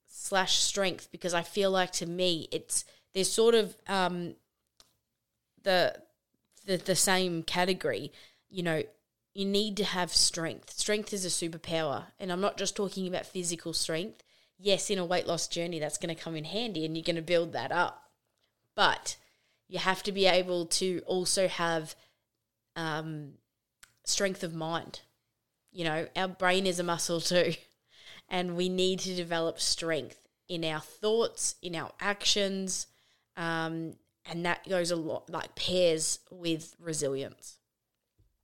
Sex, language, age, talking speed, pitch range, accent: female, English, 20-39, 155 wpm, 160-195 Hz, Australian